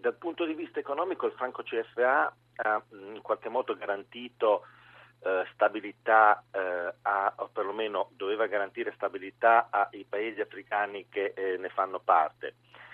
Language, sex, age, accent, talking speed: Italian, male, 40-59, native, 135 wpm